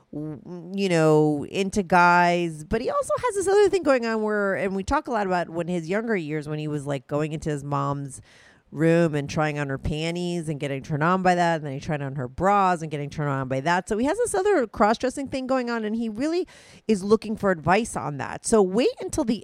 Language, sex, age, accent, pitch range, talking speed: English, female, 30-49, American, 145-200 Hz, 245 wpm